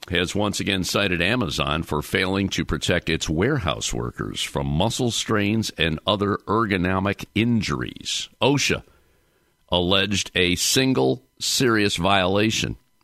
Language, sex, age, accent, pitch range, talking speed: English, male, 60-79, American, 85-110 Hz, 115 wpm